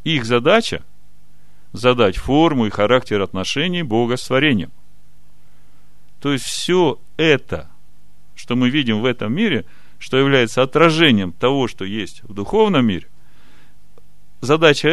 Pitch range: 105-150 Hz